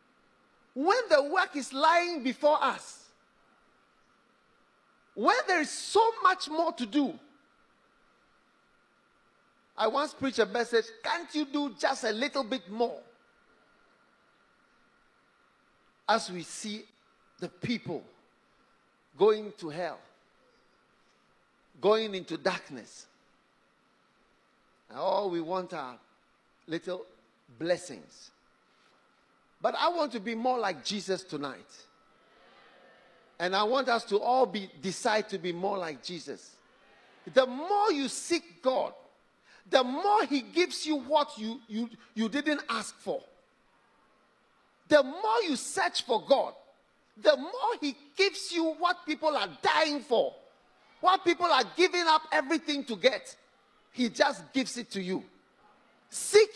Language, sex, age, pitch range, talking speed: English, male, 50-69, 210-315 Hz, 125 wpm